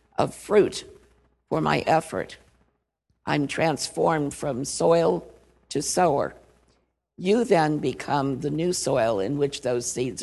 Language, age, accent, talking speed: English, 50-69, American, 125 wpm